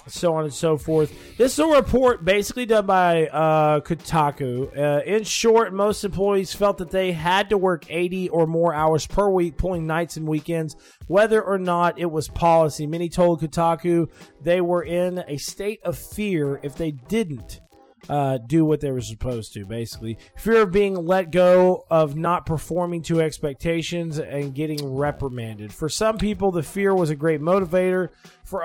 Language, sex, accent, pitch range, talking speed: English, male, American, 150-190 Hz, 180 wpm